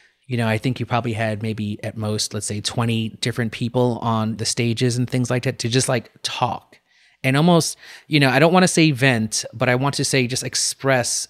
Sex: male